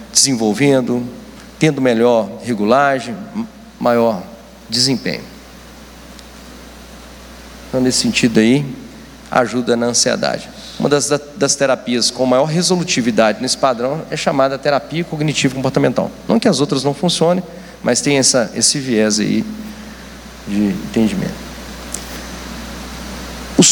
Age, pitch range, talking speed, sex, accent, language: 40-59, 125-180 Hz, 105 wpm, male, Brazilian, Portuguese